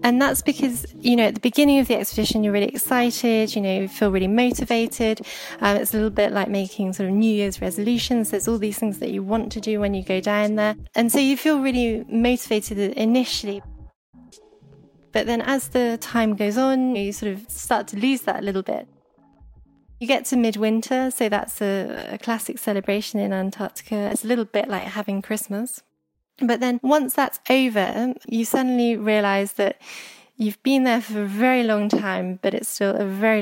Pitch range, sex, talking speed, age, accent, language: 200-255 Hz, female, 200 wpm, 20-39, British, English